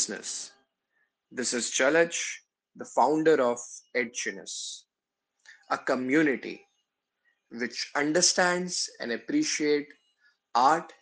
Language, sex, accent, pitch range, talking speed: Hindi, male, native, 130-180 Hz, 80 wpm